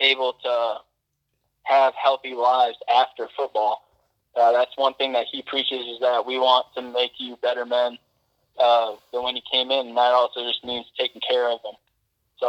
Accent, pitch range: American, 120-130 Hz